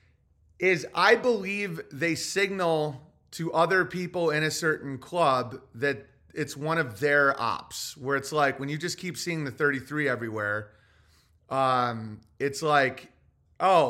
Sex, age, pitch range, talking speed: male, 30-49, 135-180 Hz, 145 wpm